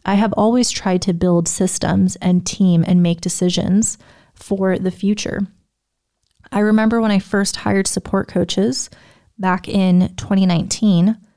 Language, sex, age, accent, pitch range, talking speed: English, female, 20-39, American, 175-200 Hz, 135 wpm